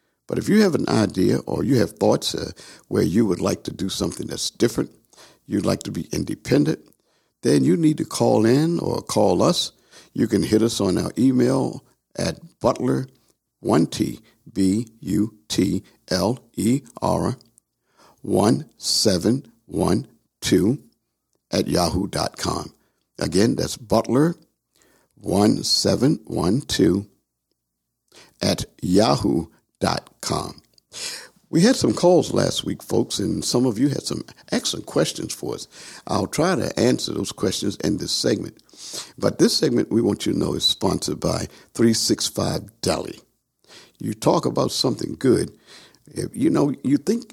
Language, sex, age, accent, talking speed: English, male, 50-69, American, 130 wpm